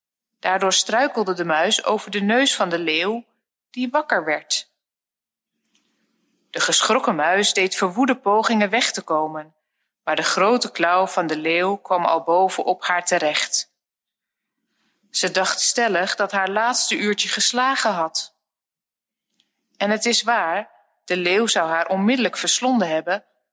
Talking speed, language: 140 wpm, Dutch